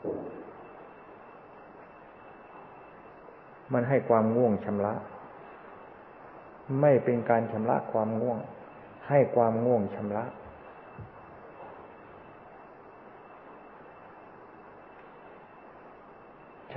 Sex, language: male, Thai